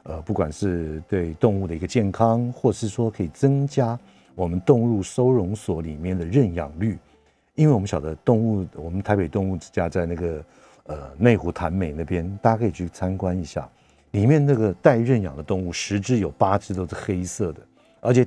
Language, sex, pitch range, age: Chinese, male, 85-105 Hz, 50-69